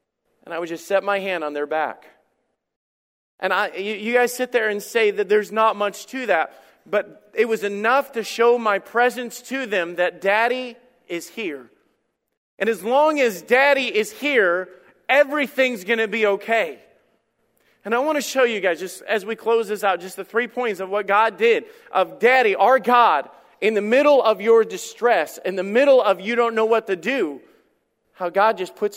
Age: 40-59